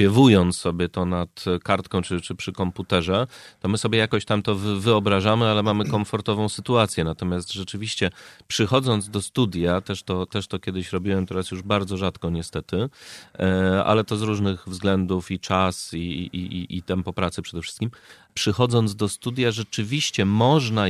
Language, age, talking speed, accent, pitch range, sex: Polish, 30-49, 160 wpm, native, 90-110 Hz, male